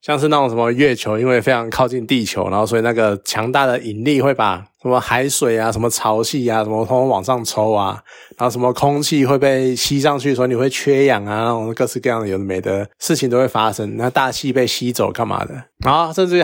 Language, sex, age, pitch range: Chinese, male, 20-39, 115-140 Hz